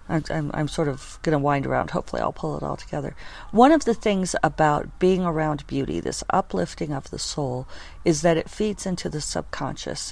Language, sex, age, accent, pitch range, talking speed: English, female, 50-69, American, 135-165 Hz, 200 wpm